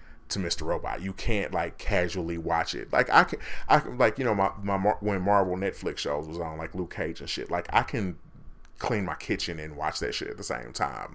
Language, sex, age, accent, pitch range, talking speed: English, male, 30-49, American, 85-100 Hz, 230 wpm